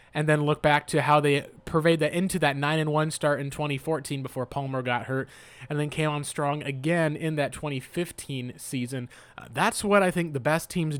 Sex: male